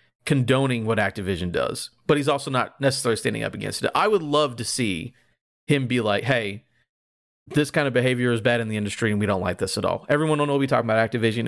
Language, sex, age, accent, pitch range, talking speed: English, male, 30-49, American, 100-135 Hz, 230 wpm